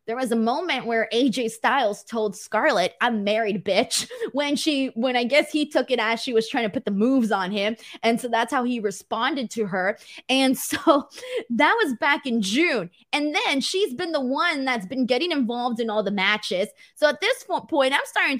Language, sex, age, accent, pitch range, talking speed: English, female, 20-39, American, 215-270 Hz, 210 wpm